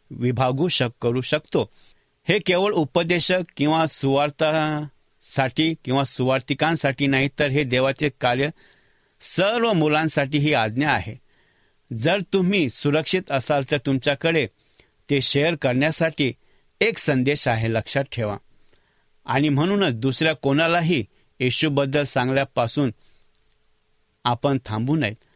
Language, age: English, 60-79